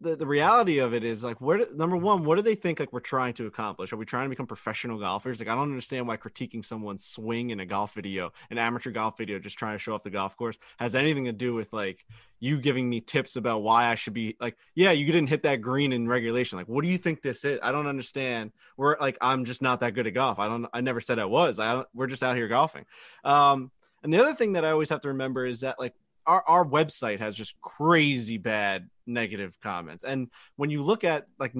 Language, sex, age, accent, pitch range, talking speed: English, male, 20-39, American, 115-150 Hz, 255 wpm